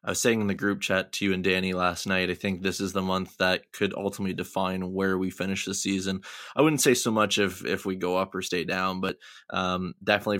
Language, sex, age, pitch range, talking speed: English, male, 20-39, 95-110 Hz, 255 wpm